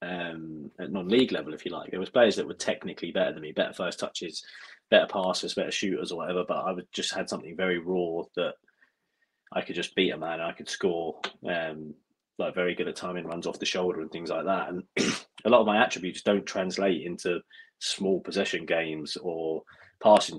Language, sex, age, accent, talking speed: English, male, 20-39, British, 210 wpm